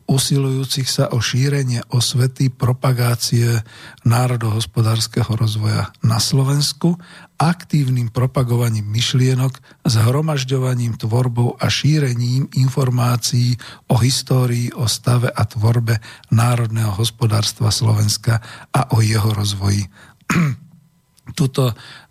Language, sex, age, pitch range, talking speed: Slovak, male, 50-69, 110-130 Hz, 85 wpm